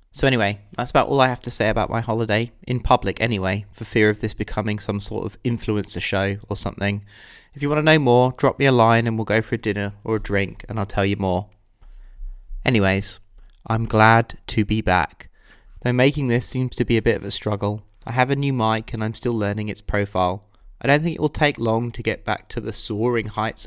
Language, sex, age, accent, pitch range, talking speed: English, male, 20-39, British, 100-115 Hz, 235 wpm